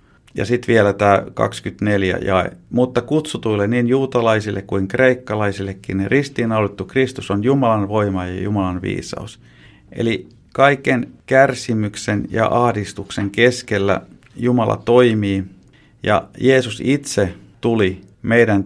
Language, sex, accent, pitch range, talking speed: Finnish, male, native, 95-120 Hz, 105 wpm